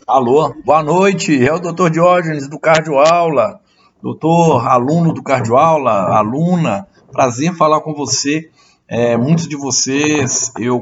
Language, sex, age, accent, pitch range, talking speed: Portuguese, male, 60-79, Brazilian, 130-175 Hz, 140 wpm